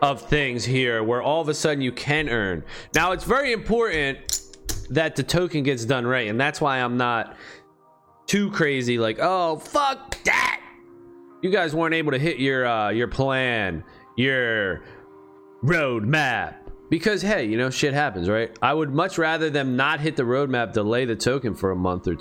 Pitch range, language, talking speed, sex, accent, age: 115-180 Hz, English, 180 wpm, male, American, 30-49